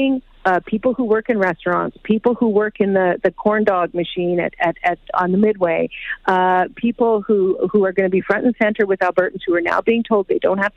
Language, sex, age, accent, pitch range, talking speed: English, female, 40-59, American, 180-210 Hz, 235 wpm